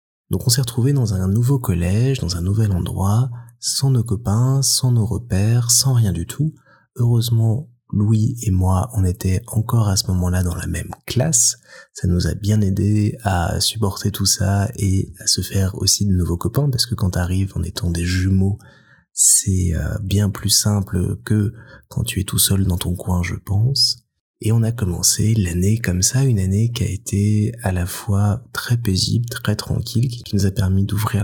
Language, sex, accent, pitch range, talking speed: French, male, French, 95-120 Hz, 195 wpm